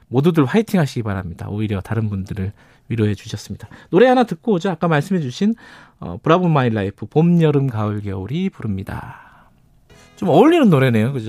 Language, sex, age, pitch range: Korean, male, 40-59, 110-155 Hz